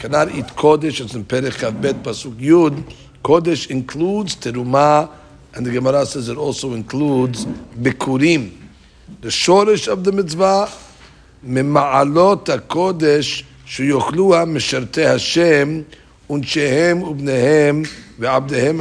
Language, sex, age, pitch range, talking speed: English, male, 60-79, 125-155 Hz, 100 wpm